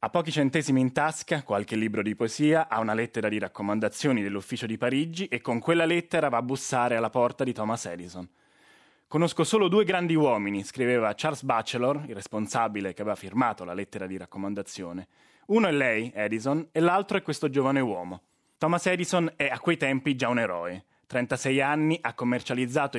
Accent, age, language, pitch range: native, 20-39, Italian, 110-150 Hz